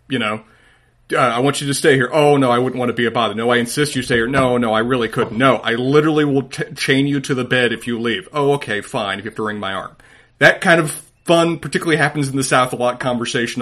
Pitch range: 115-150 Hz